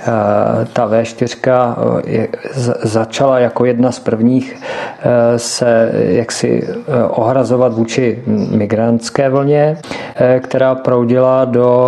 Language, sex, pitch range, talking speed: Czech, male, 115-130 Hz, 70 wpm